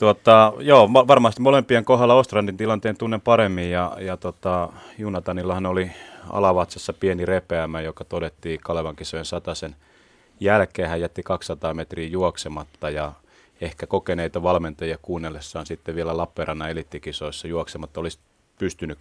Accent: native